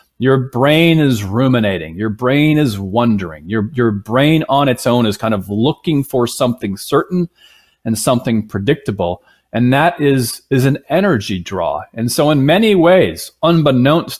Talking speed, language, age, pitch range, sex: 155 wpm, English, 40-59, 110-145 Hz, male